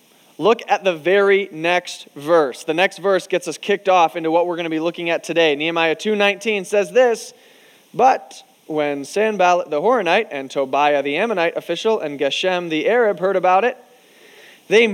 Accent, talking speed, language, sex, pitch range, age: American, 175 wpm, English, male, 170-225 Hz, 20-39